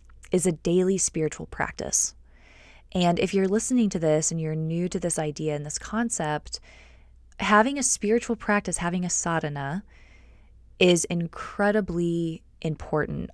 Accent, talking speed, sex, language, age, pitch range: American, 135 wpm, female, English, 20-39, 150-180 Hz